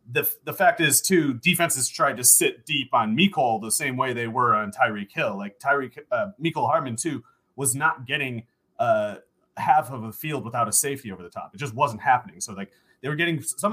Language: English